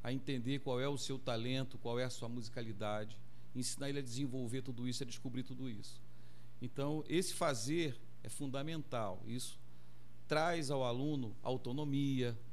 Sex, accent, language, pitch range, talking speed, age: male, Brazilian, Portuguese, 120-145 Hz, 155 wpm, 40-59